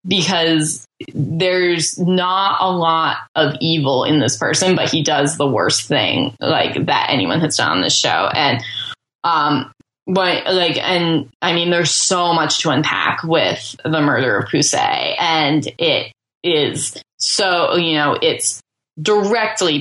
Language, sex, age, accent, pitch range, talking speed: English, female, 10-29, American, 150-180 Hz, 150 wpm